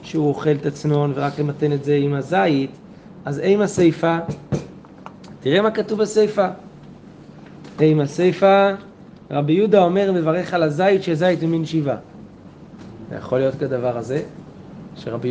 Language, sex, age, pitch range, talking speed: Hebrew, male, 30-49, 150-195 Hz, 135 wpm